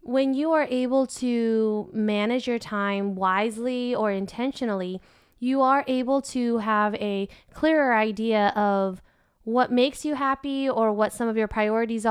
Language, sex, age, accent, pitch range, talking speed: English, female, 20-39, American, 205-245 Hz, 150 wpm